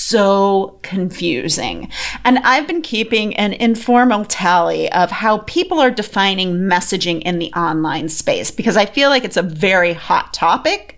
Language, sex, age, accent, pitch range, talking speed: English, female, 30-49, American, 190-250 Hz, 155 wpm